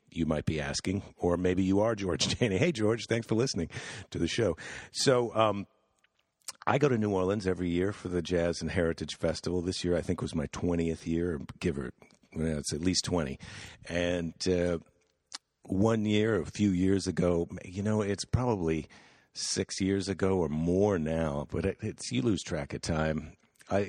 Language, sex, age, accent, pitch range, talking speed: English, male, 50-69, American, 85-105 Hz, 185 wpm